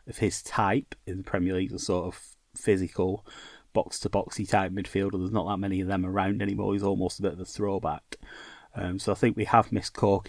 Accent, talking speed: British, 215 wpm